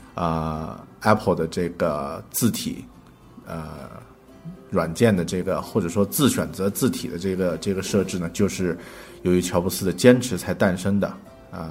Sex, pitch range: male, 90-105 Hz